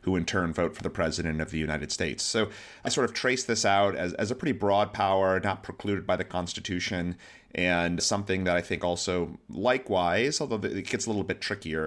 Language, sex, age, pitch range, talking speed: English, male, 30-49, 85-100 Hz, 215 wpm